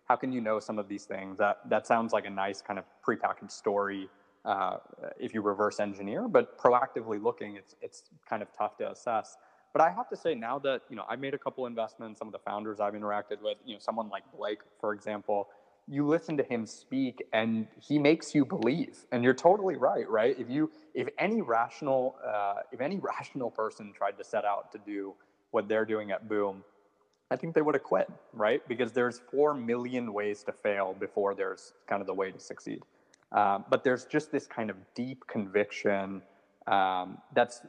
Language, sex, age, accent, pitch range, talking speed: English, male, 20-39, American, 105-130 Hz, 205 wpm